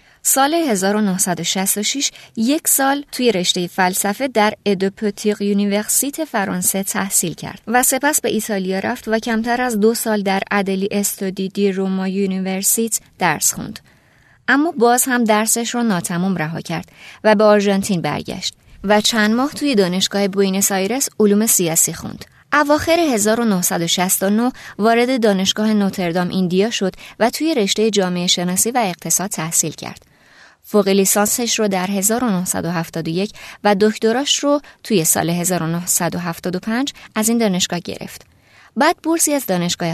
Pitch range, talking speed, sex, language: 180-230 Hz, 130 wpm, female, Persian